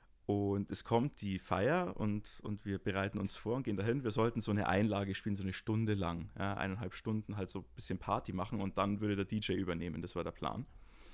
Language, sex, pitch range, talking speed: German, male, 100-145 Hz, 225 wpm